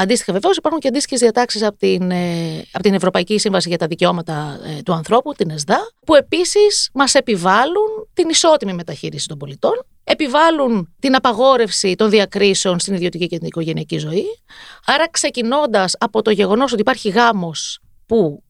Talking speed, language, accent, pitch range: 150 wpm, Greek, native, 175-250 Hz